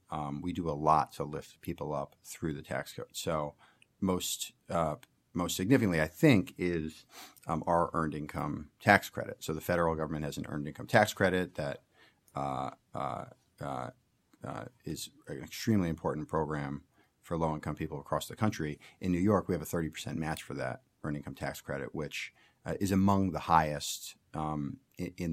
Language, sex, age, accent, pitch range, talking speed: English, male, 40-59, American, 75-90 Hz, 180 wpm